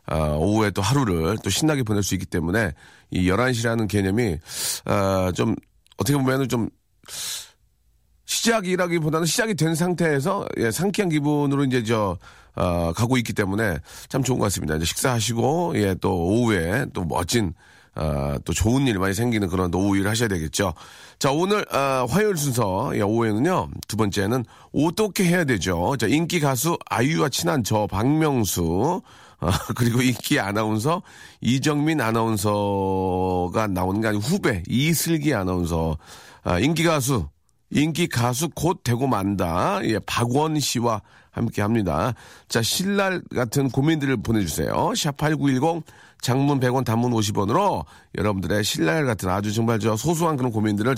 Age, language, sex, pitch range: 40-59, Korean, male, 100-145 Hz